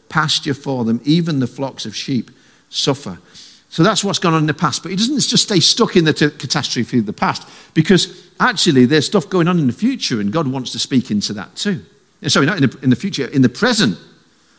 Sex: male